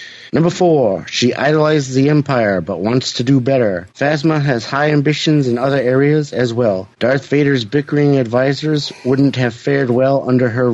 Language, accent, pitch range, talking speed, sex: English, American, 120-145 Hz, 170 wpm, male